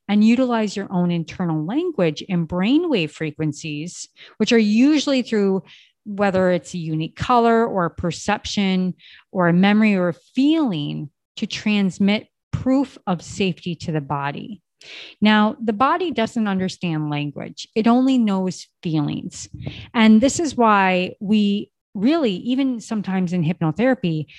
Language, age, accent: English, 30-49, American